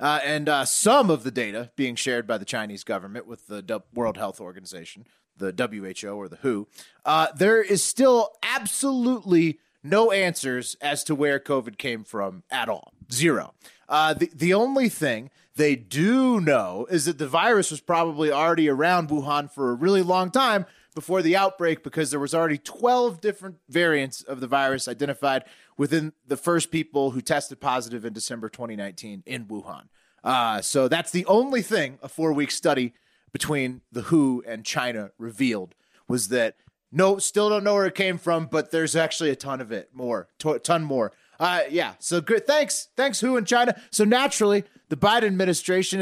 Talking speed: 180 wpm